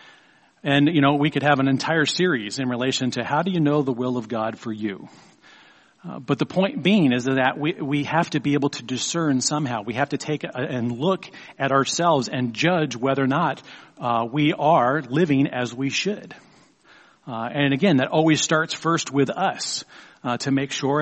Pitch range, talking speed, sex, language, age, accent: 125-150 Hz, 205 wpm, male, English, 40-59, American